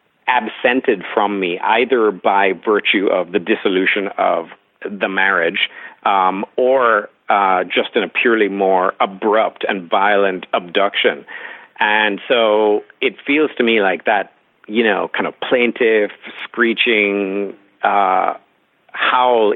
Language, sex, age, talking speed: English, male, 50-69, 125 wpm